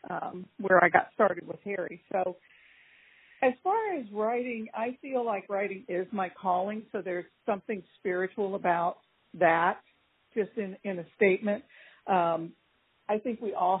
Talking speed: 150 wpm